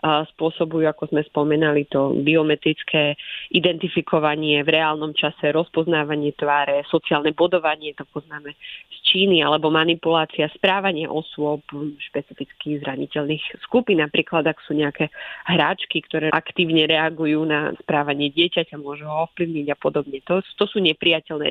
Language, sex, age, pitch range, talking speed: Slovak, female, 30-49, 150-180 Hz, 130 wpm